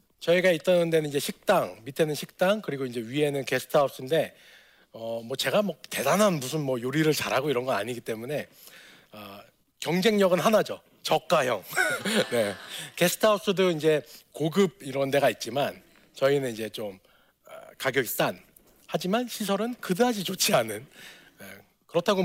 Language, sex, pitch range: Korean, male, 130-195 Hz